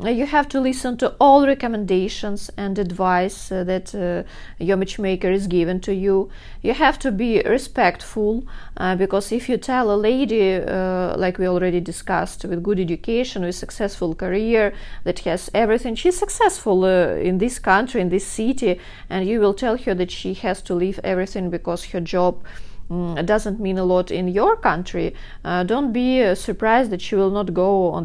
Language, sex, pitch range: English, female, 185-245 Hz